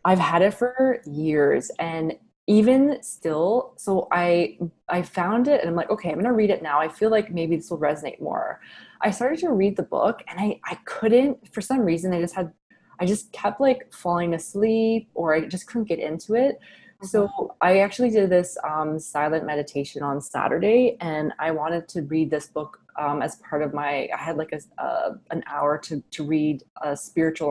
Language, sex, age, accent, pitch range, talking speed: English, female, 20-39, American, 150-200 Hz, 205 wpm